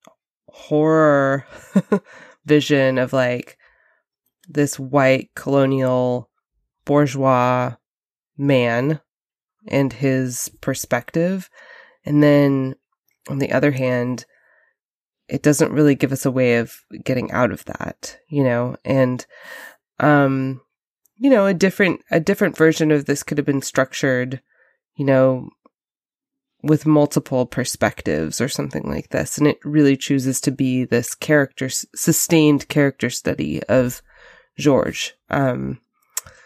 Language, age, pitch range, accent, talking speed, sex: English, 20-39, 130-150 Hz, American, 115 wpm, female